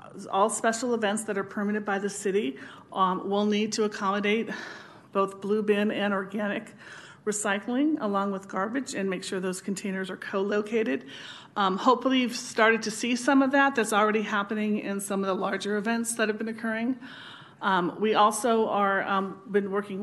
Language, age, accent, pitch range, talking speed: English, 40-59, American, 195-225 Hz, 175 wpm